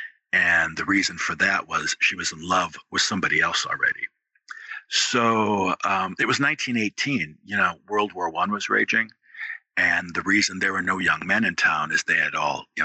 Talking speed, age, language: 190 wpm, 50-69, English